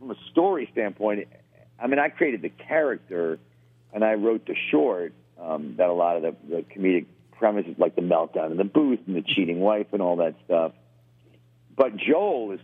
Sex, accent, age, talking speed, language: male, American, 50-69, 195 wpm, English